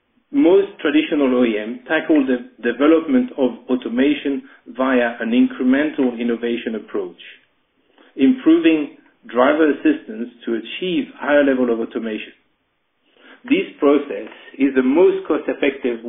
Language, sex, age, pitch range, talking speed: English, male, 50-69, 125-185 Hz, 105 wpm